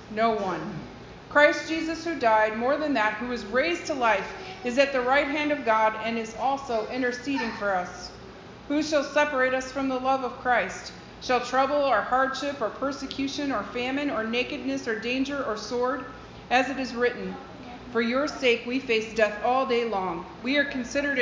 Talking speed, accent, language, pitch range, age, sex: 185 wpm, American, English, 210-265 Hz, 40-59, female